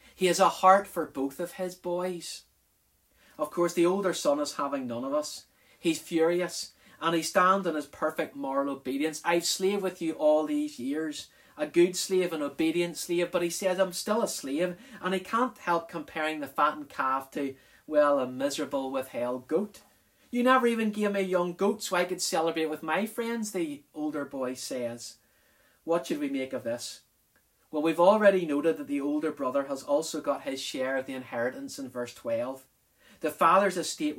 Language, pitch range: English, 150-205 Hz